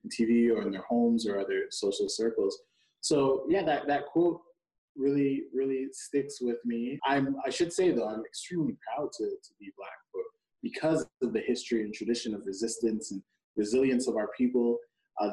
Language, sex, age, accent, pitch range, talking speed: English, male, 20-39, American, 110-145 Hz, 175 wpm